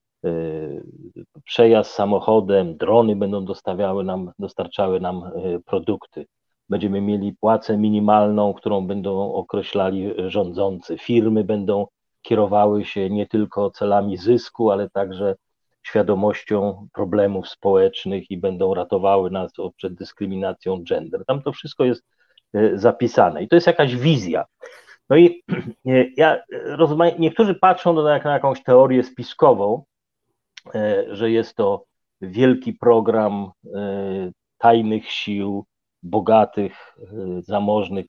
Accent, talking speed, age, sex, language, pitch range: native, 105 wpm, 40-59, male, Polish, 100-115 Hz